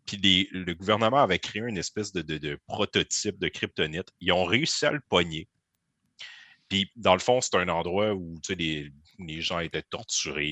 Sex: male